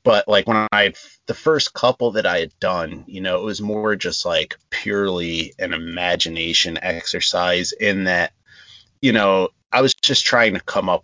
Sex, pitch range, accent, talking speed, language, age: male, 90-110 Hz, American, 180 wpm, English, 30-49